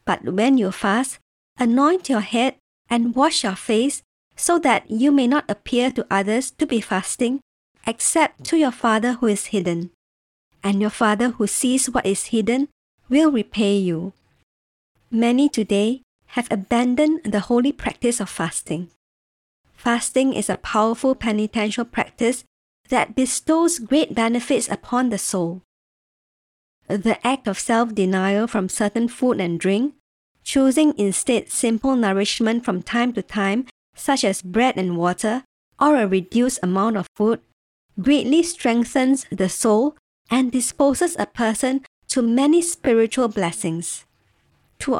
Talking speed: 135 wpm